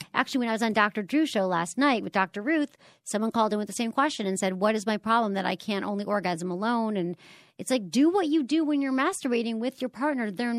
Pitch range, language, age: 180-225 Hz, English, 40-59